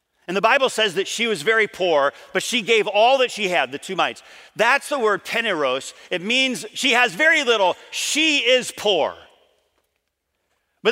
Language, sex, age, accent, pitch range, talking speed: English, male, 40-59, American, 185-265 Hz, 180 wpm